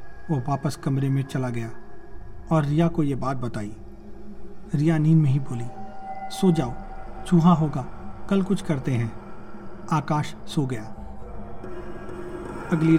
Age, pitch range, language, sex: 40-59, 135-175 Hz, Hindi, male